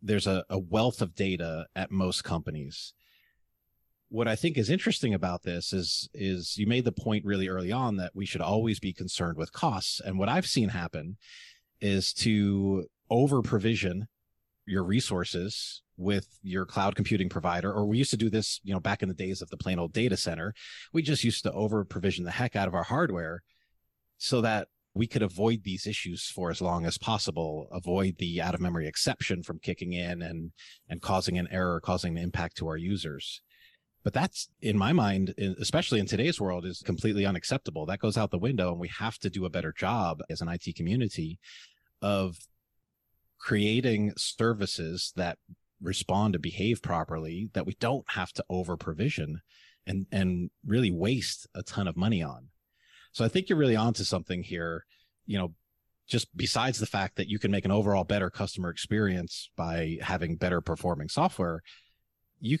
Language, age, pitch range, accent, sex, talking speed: English, 30-49, 90-110 Hz, American, male, 180 wpm